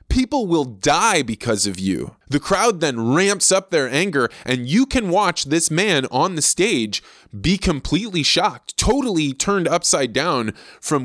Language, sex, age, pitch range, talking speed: English, male, 20-39, 120-175 Hz, 165 wpm